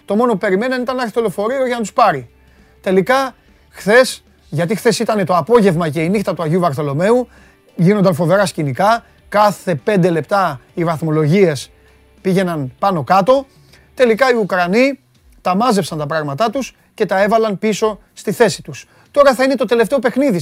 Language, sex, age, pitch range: Greek, male, 30-49, 160-225 Hz